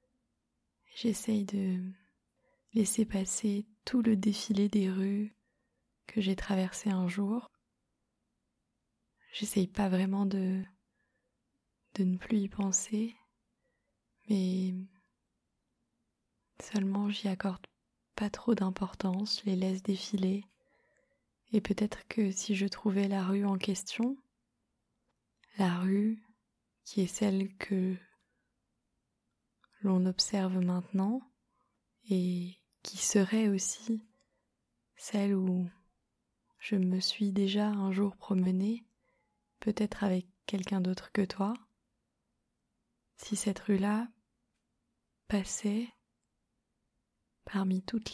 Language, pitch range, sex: French, 190-215 Hz, female